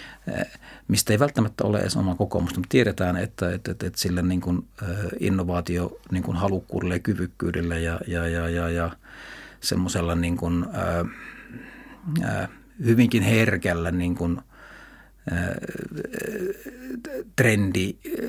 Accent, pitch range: native, 90-105 Hz